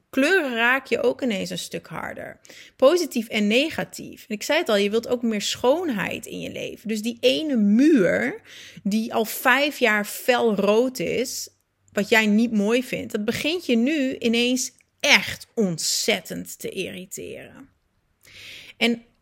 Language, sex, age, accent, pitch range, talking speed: Dutch, female, 30-49, Dutch, 200-245 Hz, 155 wpm